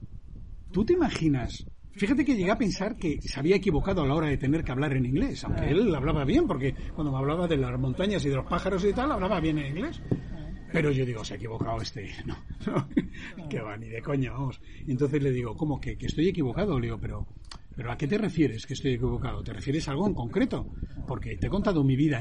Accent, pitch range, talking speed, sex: Spanish, 120-170 Hz, 235 wpm, male